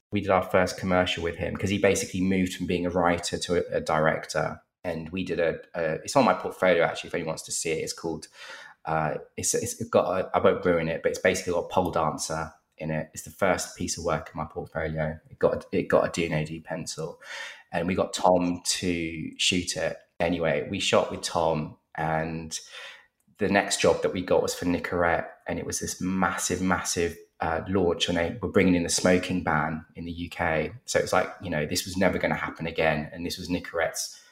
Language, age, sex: English, 20-39, male